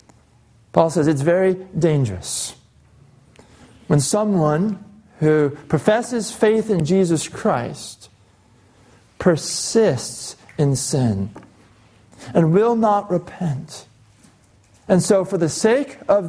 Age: 40-59